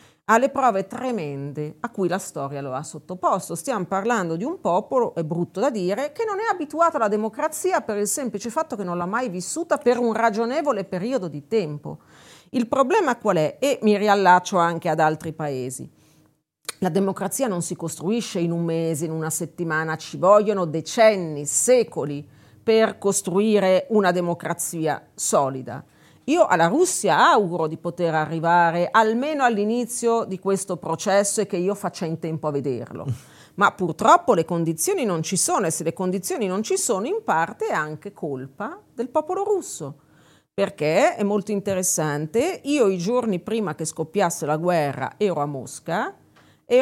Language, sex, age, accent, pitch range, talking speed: Italian, female, 40-59, native, 160-225 Hz, 165 wpm